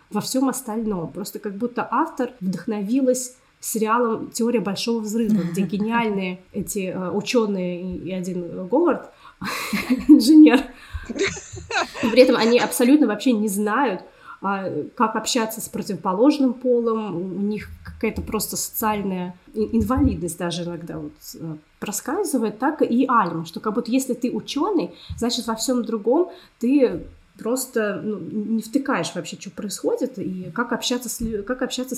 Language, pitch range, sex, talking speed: Russian, 200-255 Hz, female, 130 wpm